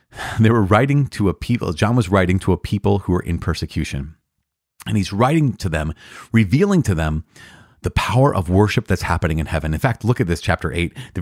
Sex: male